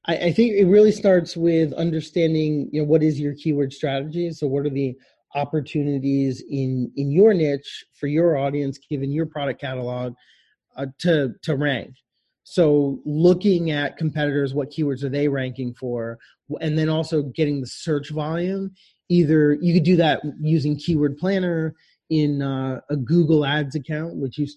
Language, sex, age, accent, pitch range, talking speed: English, male, 30-49, American, 140-160 Hz, 165 wpm